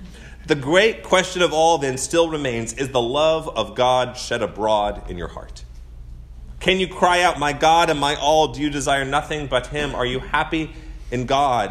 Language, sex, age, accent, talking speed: English, male, 30-49, American, 195 wpm